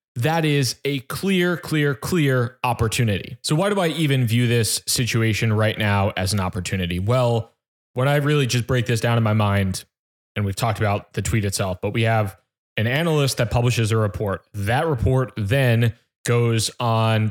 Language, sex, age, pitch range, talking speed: English, male, 20-39, 115-135 Hz, 180 wpm